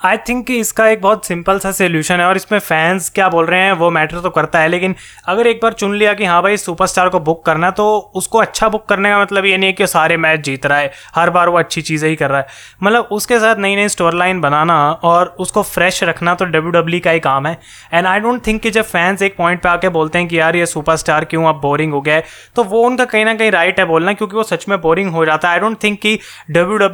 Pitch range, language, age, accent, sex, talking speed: 165-200 Hz, Hindi, 20-39, native, male, 275 wpm